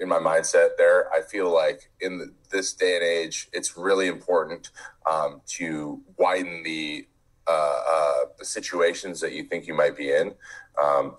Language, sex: English, male